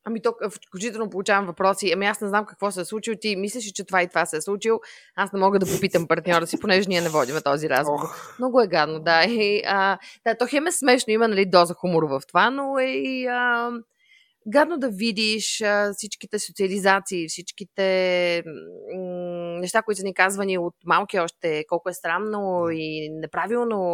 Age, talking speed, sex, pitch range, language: 20-39, 175 wpm, female, 165-220 Hz, Bulgarian